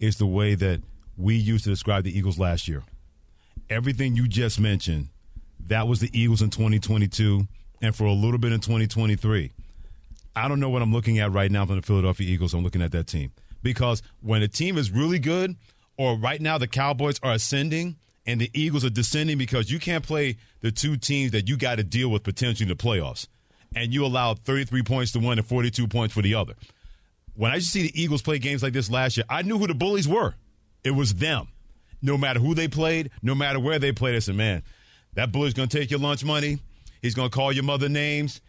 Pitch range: 105-145 Hz